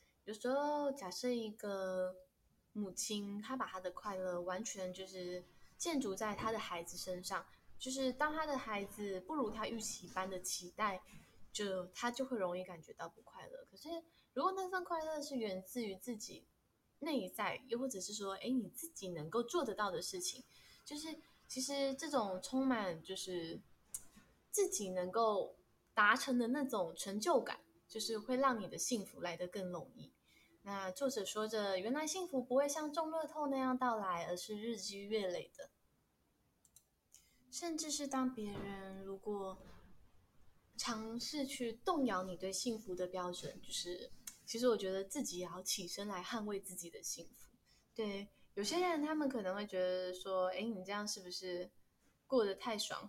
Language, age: Chinese, 10-29